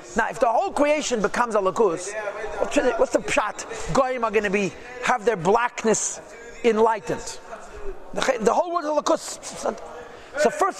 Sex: male